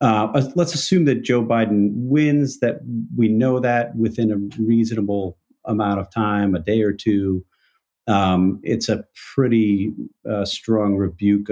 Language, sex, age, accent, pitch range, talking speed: English, male, 40-59, American, 95-115 Hz, 145 wpm